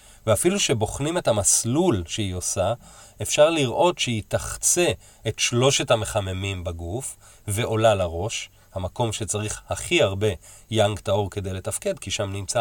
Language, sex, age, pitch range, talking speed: Hebrew, male, 30-49, 100-120 Hz, 130 wpm